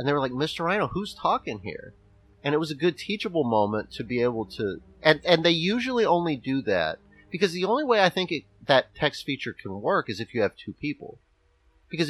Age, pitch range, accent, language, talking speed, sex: 30-49, 100-140 Hz, American, English, 230 wpm, male